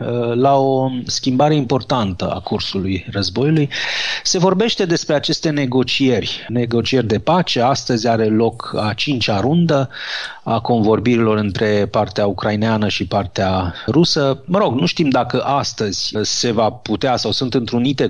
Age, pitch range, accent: 30-49, 110-135 Hz, native